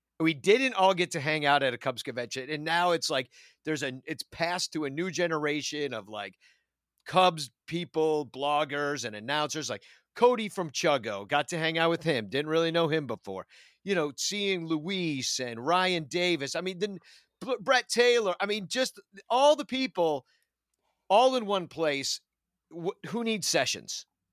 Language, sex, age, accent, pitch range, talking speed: English, male, 50-69, American, 130-195 Hz, 175 wpm